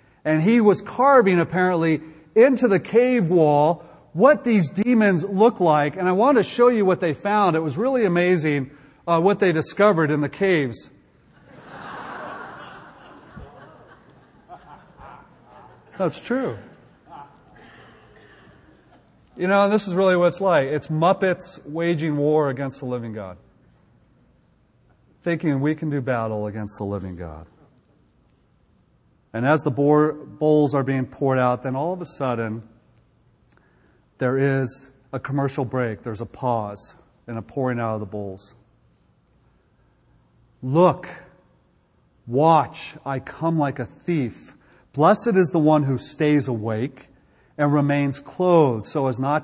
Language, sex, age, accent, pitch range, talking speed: English, male, 40-59, American, 130-185 Hz, 130 wpm